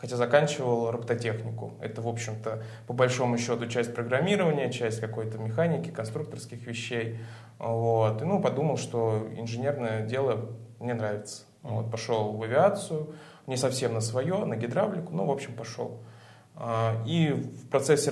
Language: Russian